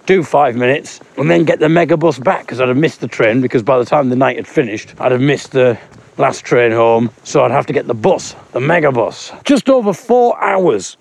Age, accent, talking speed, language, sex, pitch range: 40-59, British, 240 wpm, English, male, 125-160 Hz